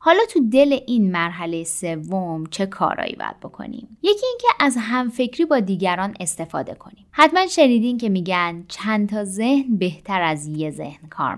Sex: female